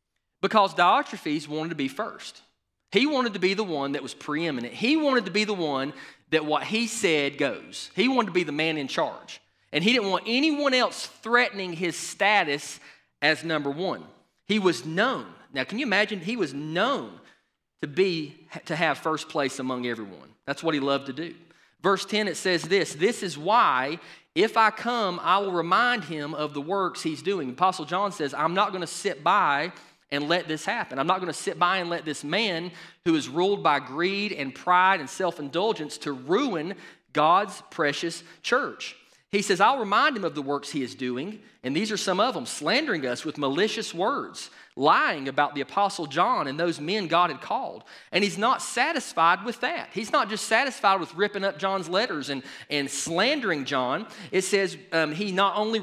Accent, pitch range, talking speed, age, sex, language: American, 150-200 Hz, 195 wpm, 30-49, male, English